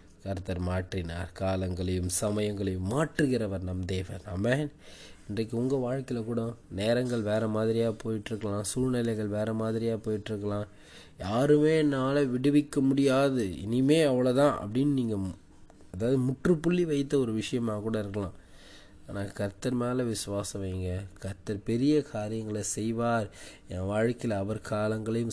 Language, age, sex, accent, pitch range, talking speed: Tamil, 20-39, male, native, 100-125 Hz, 115 wpm